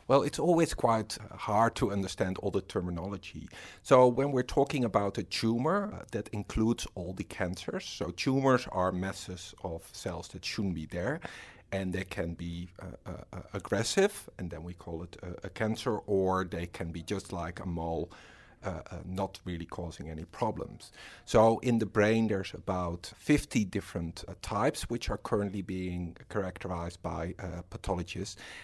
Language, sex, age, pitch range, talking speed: English, male, 50-69, 90-105 Hz, 170 wpm